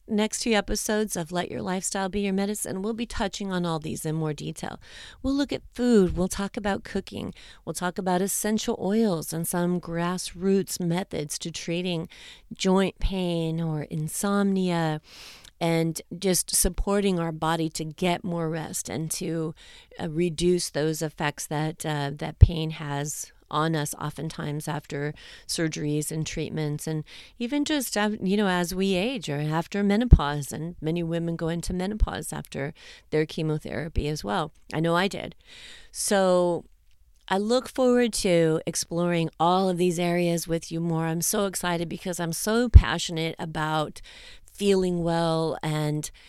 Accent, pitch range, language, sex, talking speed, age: American, 160-195 Hz, English, female, 155 wpm, 40-59